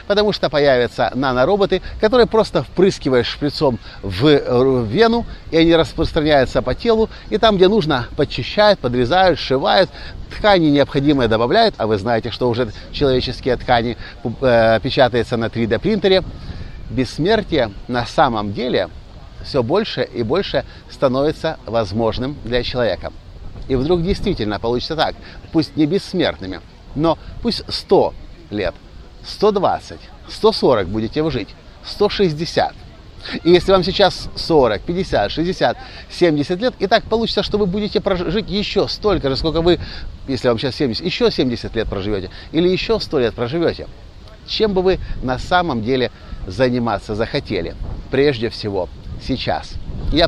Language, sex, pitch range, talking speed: Russian, male, 115-180 Hz, 135 wpm